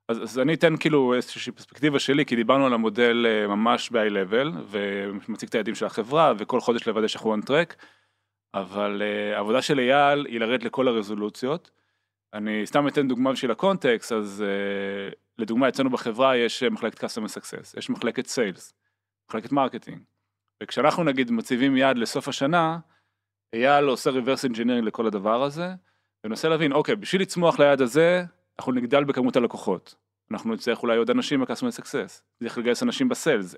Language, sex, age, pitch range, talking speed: Hebrew, male, 30-49, 110-150 Hz, 155 wpm